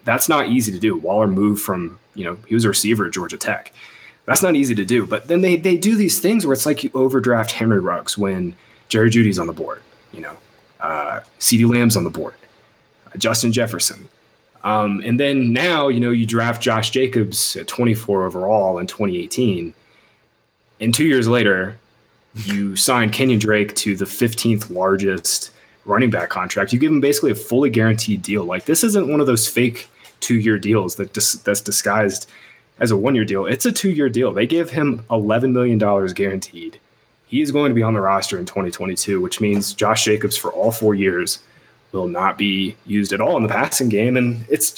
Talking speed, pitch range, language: 200 wpm, 105-130 Hz, English